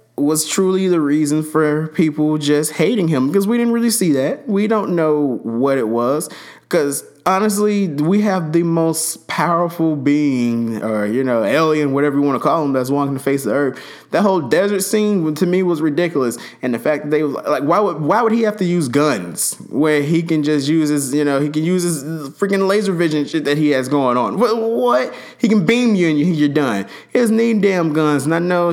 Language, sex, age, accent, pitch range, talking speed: English, male, 20-39, American, 135-170 Hz, 225 wpm